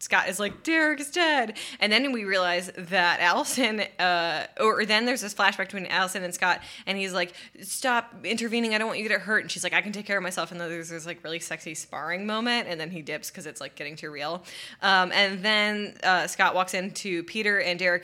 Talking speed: 235 wpm